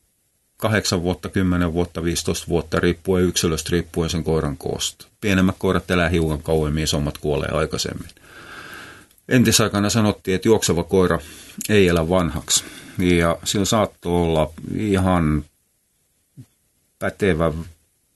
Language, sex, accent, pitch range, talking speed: Finnish, male, native, 80-95 Hz, 110 wpm